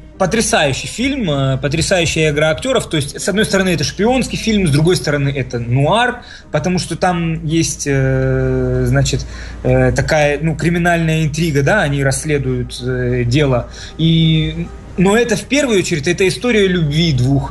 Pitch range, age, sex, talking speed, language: 140-190 Hz, 20-39, male, 140 wpm, Russian